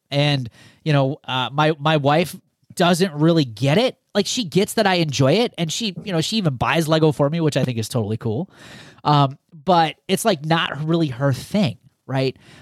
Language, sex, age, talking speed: English, male, 30-49, 205 wpm